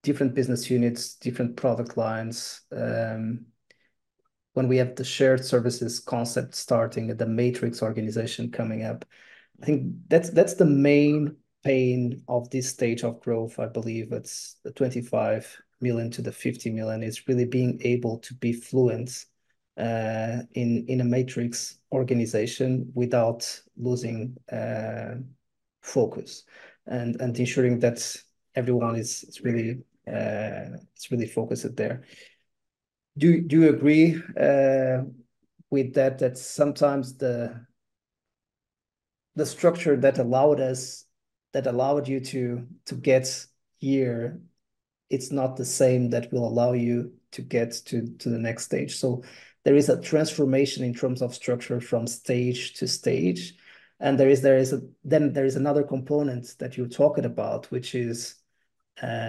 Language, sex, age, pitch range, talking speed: English, male, 30-49, 120-135 Hz, 145 wpm